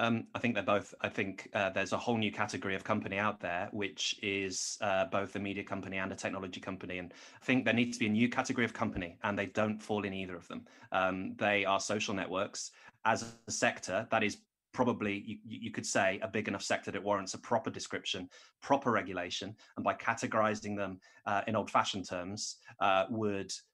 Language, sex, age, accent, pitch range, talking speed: English, male, 30-49, British, 95-120 Hz, 215 wpm